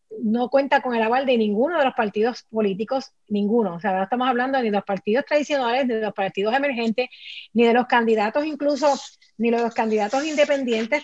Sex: female